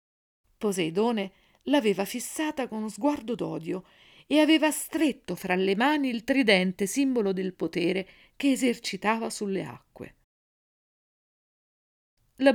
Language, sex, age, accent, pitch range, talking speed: Italian, female, 50-69, native, 185-255 Hz, 110 wpm